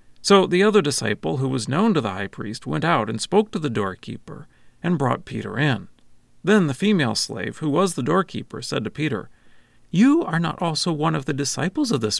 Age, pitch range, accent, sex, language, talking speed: 40-59, 115-170 Hz, American, male, English, 210 wpm